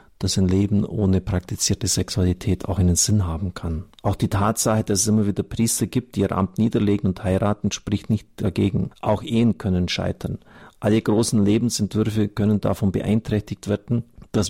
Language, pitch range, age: German, 95-110 Hz, 50-69